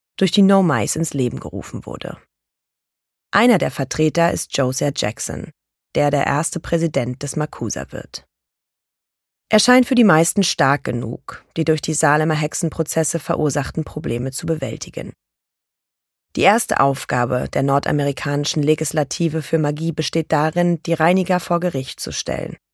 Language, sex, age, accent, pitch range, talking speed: German, female, 30-49, German, 145-175 Hz, 140 wpm